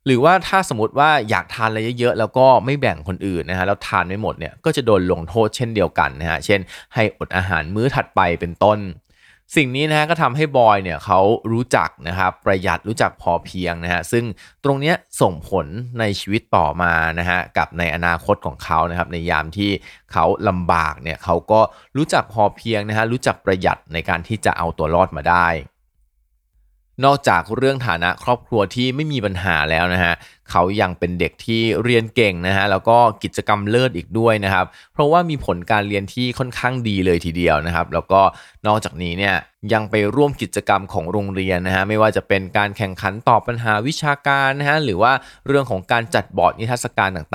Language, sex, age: Thai, male, 20-39